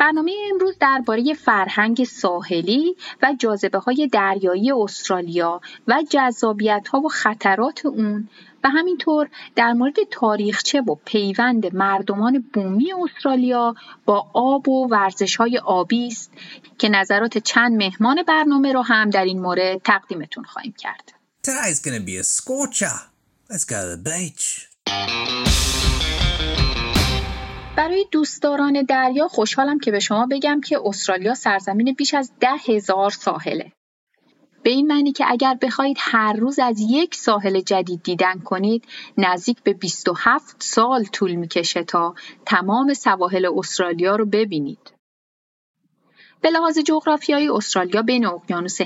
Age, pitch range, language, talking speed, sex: 30-49, 195-275 Hz, Persian, 110 wpm, female